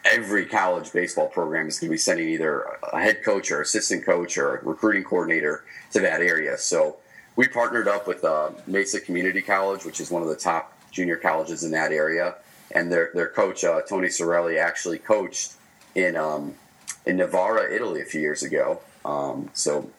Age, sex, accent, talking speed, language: 30-49, male, American, 190 wpm, English